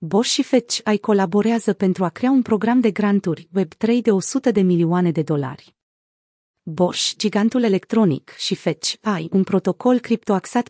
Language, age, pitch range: Romanian, 30-49, 175-215 Hz